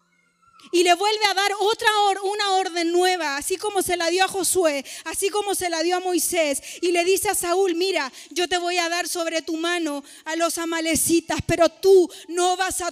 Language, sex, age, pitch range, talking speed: Spanish, female, 30-49, 295-375 Hz, 215 wpm